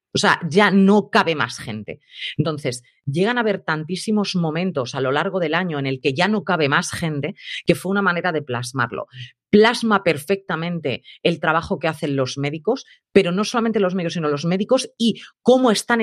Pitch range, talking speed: 140-205 Hz, 190 wpm